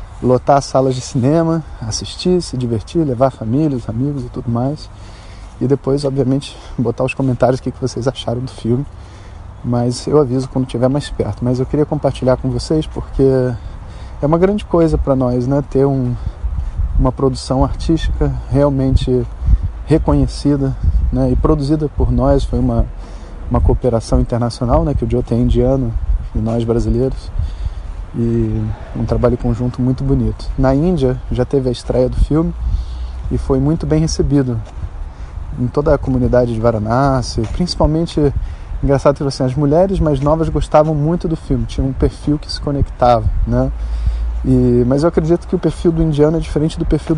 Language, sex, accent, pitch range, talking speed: Portuguese, male, Brazilian, 110-140 Hz, 160 wpm